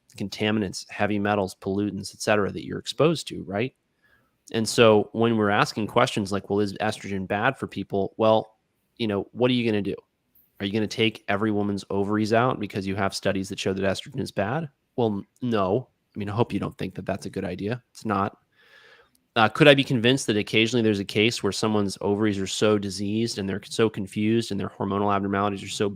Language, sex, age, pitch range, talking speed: English, male, 30-49, 100-120 Hz, 215 wpm